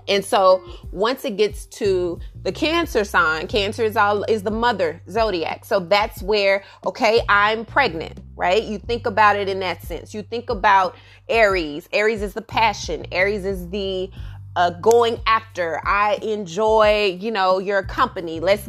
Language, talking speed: English, 165 wpm